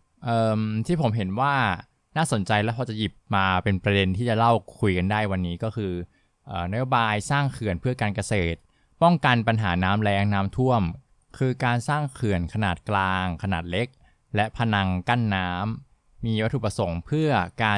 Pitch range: 95-120 Hz